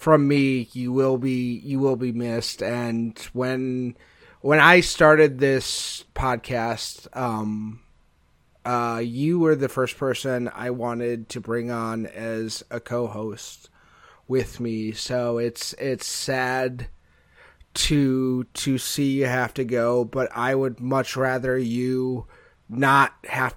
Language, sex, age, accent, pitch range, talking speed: English, male, 30-49, American, 115-130 Hz, 130 wpm